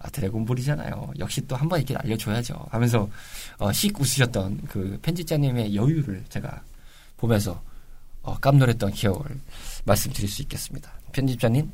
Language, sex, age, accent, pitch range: Korean, male, 20-39, native, 120-185 Hz